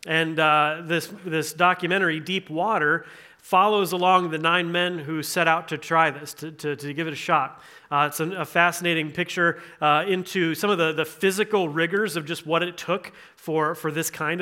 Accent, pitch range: American, 160-190 Hz